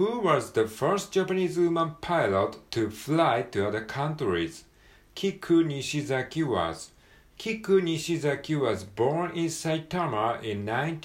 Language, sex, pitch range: Japanese, male, 110-170 Hz